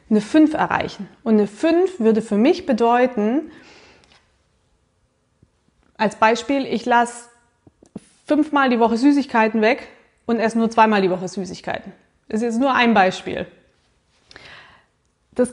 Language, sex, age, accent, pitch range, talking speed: German, female, 20-39, German, 215-275 Hz, 130 wpm